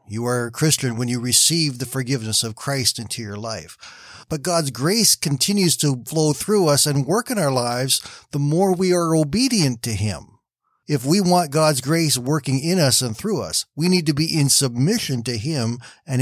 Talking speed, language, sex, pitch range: 200 wpm, English, male, 115-150 Hz